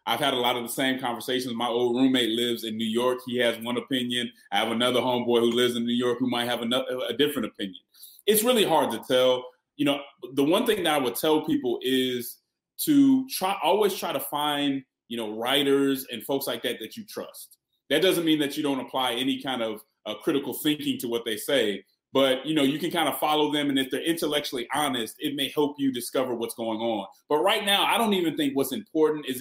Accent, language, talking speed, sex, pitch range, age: American, English, 235 wpm, male, 125-155 Hz, 30-49